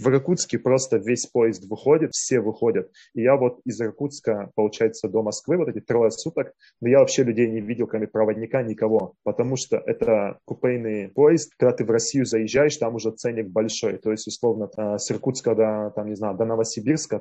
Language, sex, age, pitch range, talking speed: Russian, male, 20-39, 110-125 Hz, 190 wpm